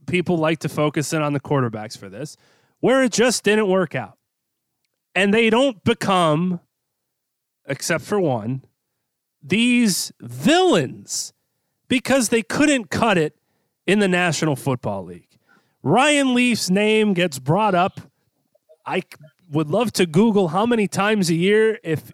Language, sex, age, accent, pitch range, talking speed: English, male, 30-49, American, 165-245 Hz, 140 wpm